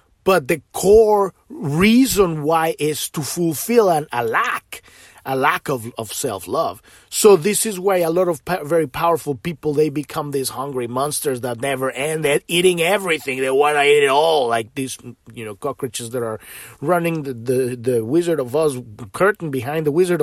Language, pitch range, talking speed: English, 140-205 Hz, 180 wpm